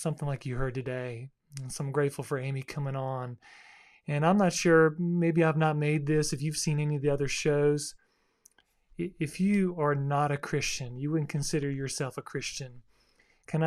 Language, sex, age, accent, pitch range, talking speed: English, male, 30-49, American, 145-165 Hz, 185 wpm